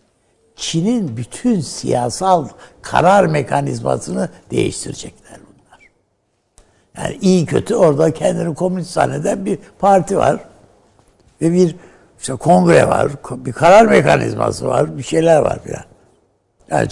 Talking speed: 105 wpm